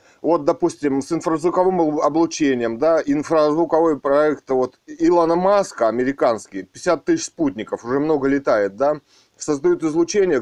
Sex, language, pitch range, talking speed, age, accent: male, Russian, 140-180 Hz, 120 wpm, 30-49, native